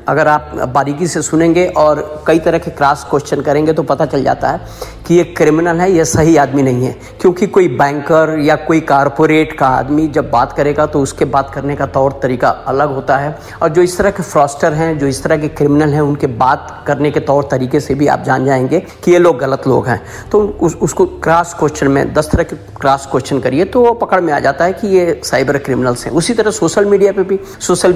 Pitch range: 145-175 Hz